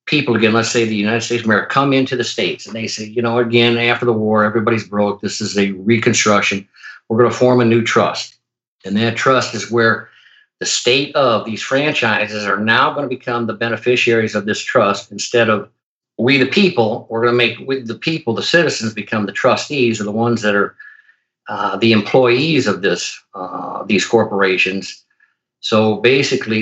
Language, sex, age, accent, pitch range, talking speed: English, male, 50-69, American, 105-120 Hz, 195 wpm